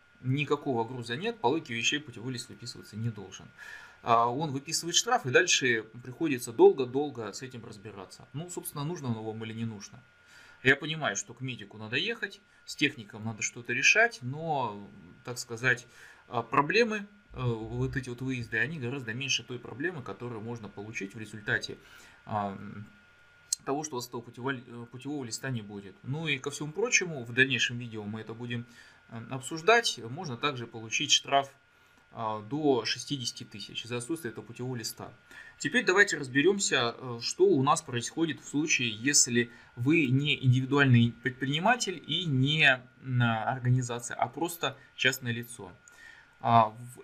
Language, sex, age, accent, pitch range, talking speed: Russian, male, 20-39, native, 115-145 Hz, 145 wpm